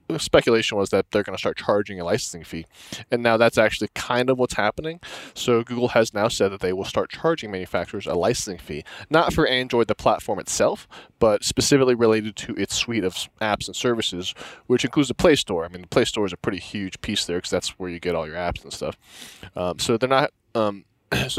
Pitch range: 95-120 Hz